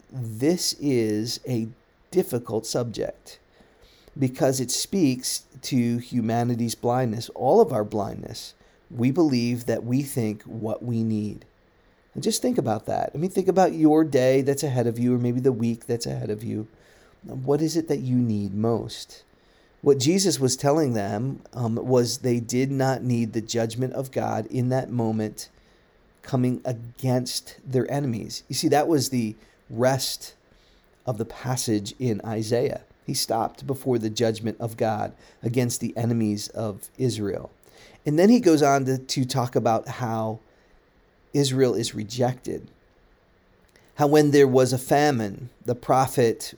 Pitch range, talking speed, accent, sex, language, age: 115-135 Hz, 155 wpm, American, male, English, 40-59